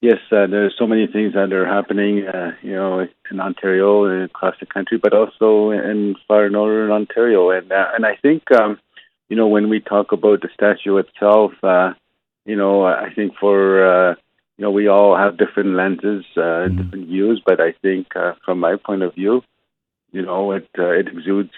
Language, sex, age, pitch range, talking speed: English, male, 50-69, 95-105 Hz, 195 wpm